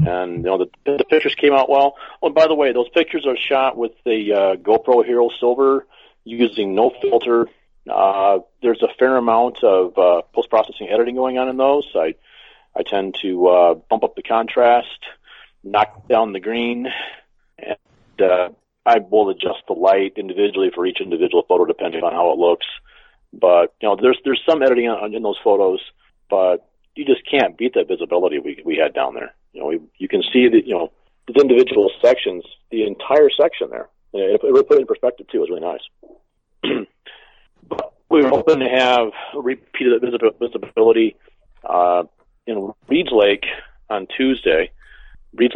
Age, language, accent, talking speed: 40-59, English, American, 180 wpm